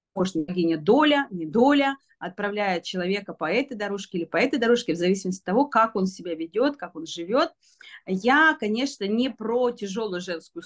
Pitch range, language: 190-275 Hz, Russian